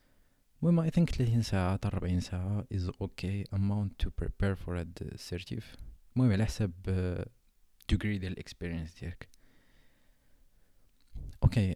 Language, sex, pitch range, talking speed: Arabic, male, 90-110 Hz, 120 wpm